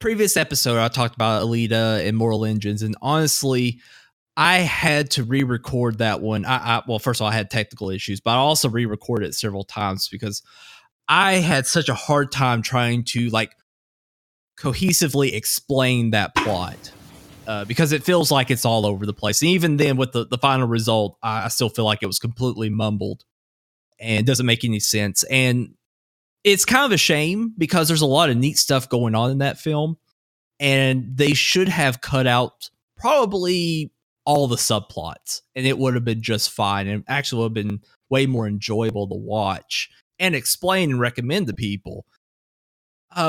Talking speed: 185 wpm